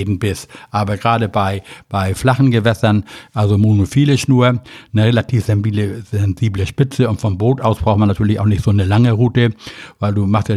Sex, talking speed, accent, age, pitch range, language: male, 180 wpm, German, 60-79, 105-125 Hz, German